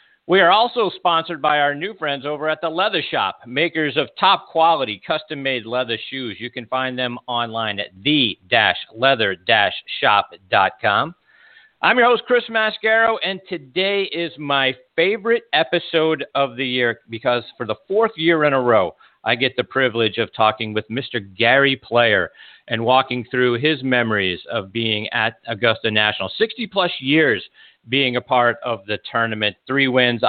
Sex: male